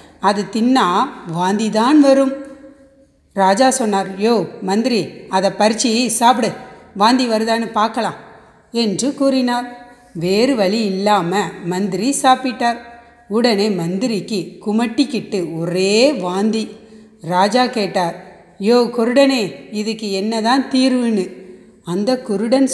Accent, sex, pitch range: native, female, 200-260 Hz